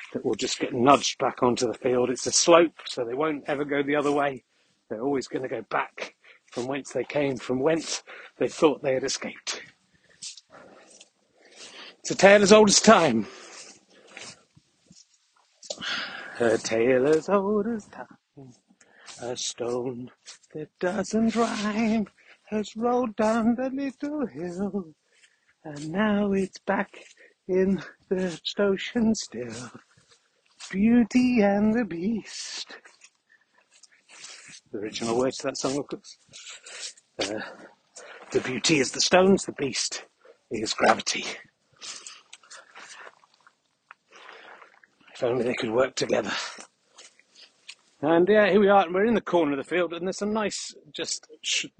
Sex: male